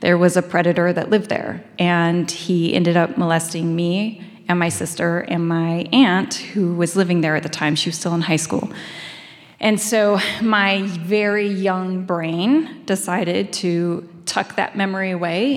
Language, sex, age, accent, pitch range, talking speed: English, female, 20-39, American, 175-210 Hz, 170 wpm